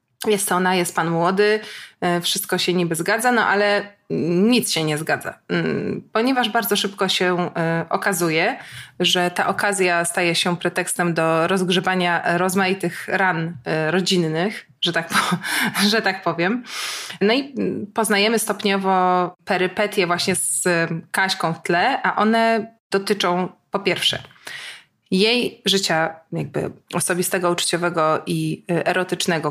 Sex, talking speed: female, 120 wpm